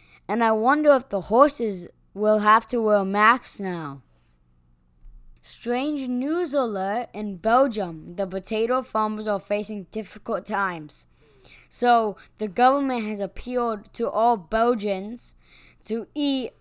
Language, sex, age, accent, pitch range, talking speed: English, female, 20-39, American, 190-245 Hz, 125 wpm